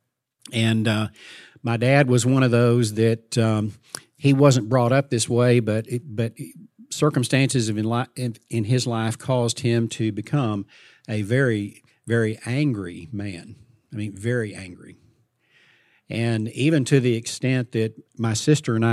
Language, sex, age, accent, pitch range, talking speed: English, male, 50-69, American, 110-135 Hz, 150 wpm